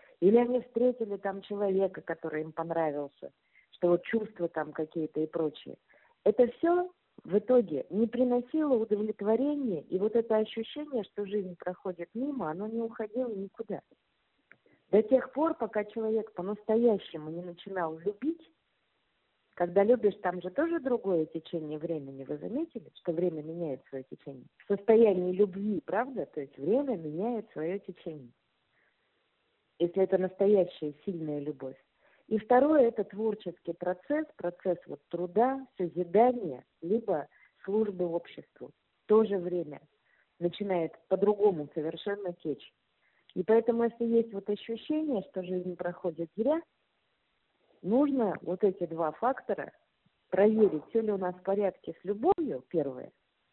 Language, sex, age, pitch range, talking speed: Russian, female, 50-69, 170-225 Hz, 130 wpm